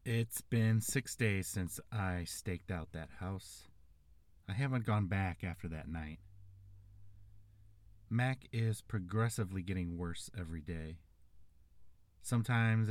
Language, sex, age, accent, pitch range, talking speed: English, male, 30-49, American, 85-105 Hz, 115 wpm